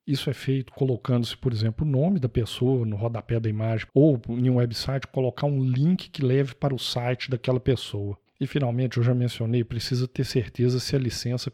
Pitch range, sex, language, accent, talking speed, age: 115-140 Hz, male, Portuguese, Brazilian, 205 wpm, 50-69